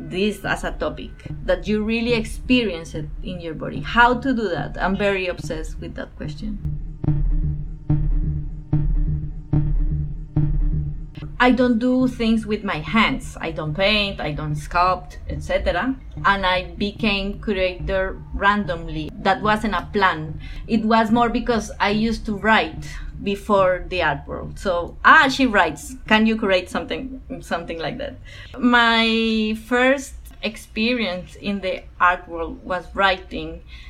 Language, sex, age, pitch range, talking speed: English, female, 30-49, 165-225 Hz, 135 wpm